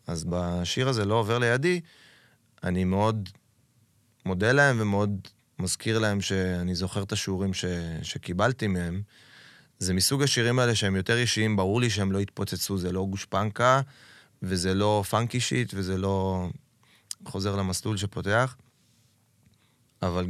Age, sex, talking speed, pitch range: 20-39, male, 135 wpm, 95-115 Hz